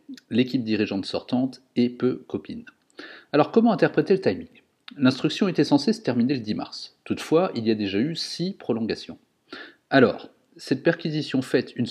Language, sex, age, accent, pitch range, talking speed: French, male, 40-59, French, 110-160 Hz, 160 wpm